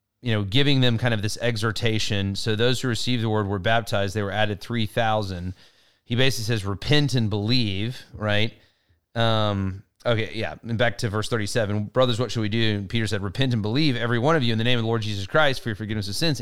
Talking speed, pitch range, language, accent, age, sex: 225 wpm, 105-130 Hz, English, American, 30-49, male